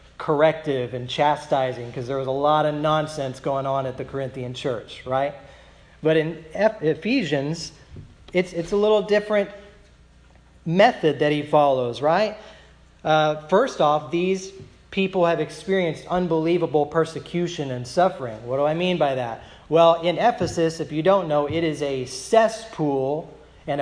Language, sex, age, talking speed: English, male, 40-59, 150 wpm